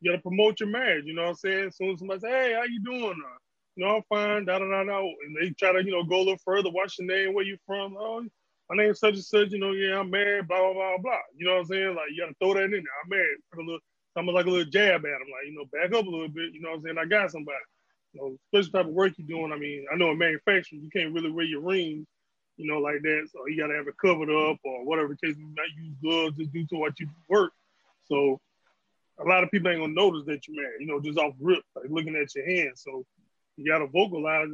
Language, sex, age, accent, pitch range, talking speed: English, male, 20-39, American, 160-200 Hz, 295 wpm